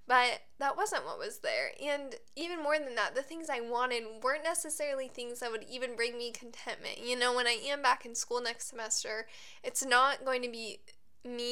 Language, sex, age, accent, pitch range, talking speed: English, female, 10-29, American, 230-270 Hz, 210 wpm